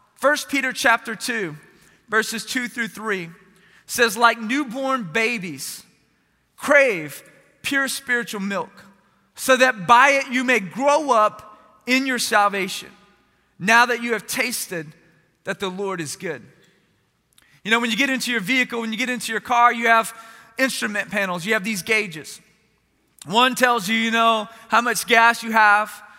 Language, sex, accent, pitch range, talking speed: English, male, American, 215-260 Hz, 160 wpm